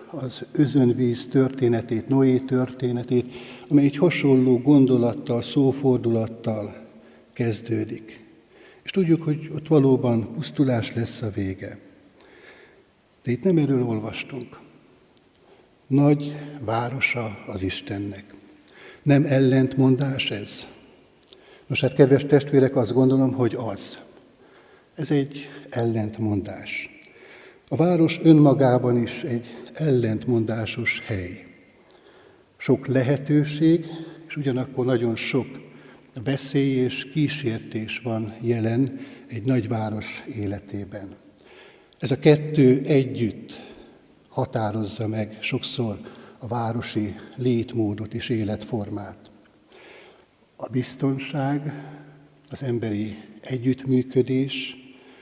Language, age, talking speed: Hungarian, 60-79, 85 wpm